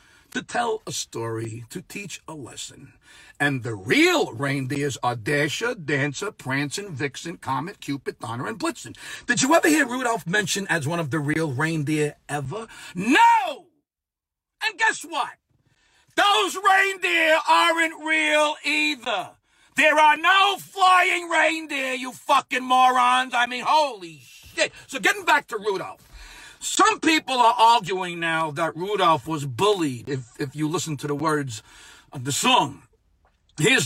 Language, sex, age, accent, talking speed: English, male, 50-69, American, 145 wpm